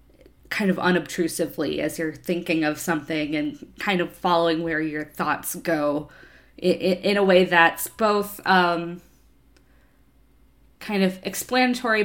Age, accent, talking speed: 20-39, American, 125 wpm